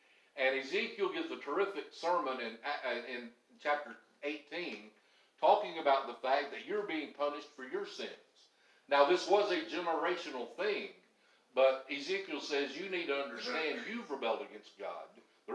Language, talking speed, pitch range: English, 150 wpm, 130-195 Hz